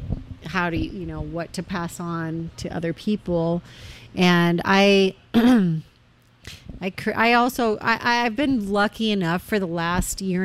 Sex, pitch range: female, 175-220 Hz